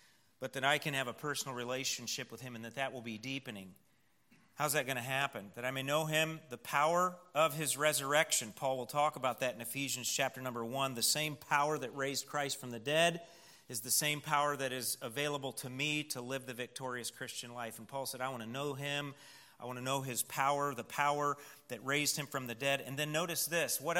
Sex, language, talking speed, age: male, English, 230 wpm, 40-59